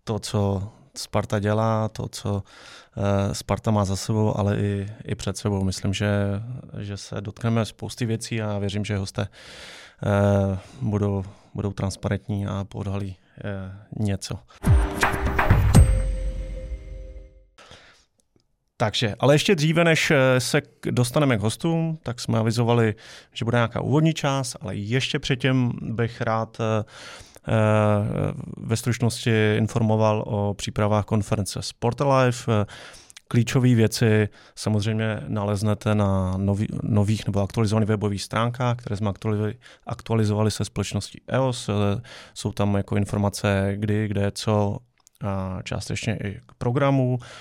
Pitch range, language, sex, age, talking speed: 100-120 Hz, Czech, male, 30-49, 115 wpm